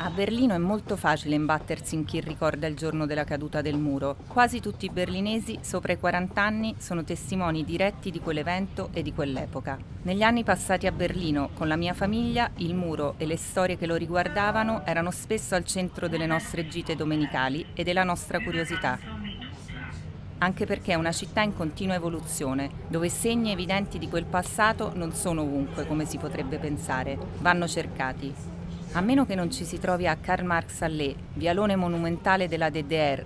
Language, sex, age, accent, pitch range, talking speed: Italian, female, 30-49, native, 155-190 Hz, 175 wpm